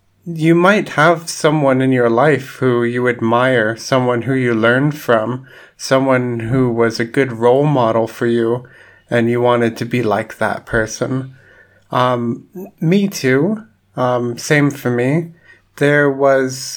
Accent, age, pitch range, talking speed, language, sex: American, 30-49, 115-130 Hz, 145 wpm, English, male